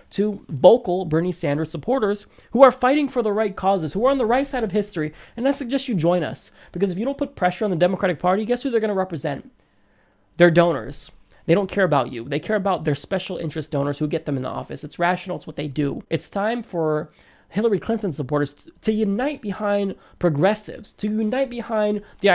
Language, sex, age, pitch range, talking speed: English, male, 20-39, 150-215 Hz, 220 wpm